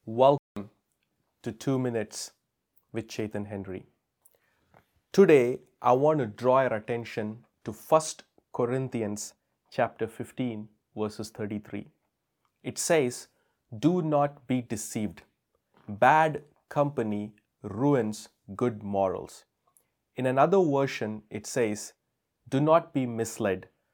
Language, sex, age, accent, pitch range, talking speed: English, male, 30-49, Indian, 105-135 Hz, 105 wpm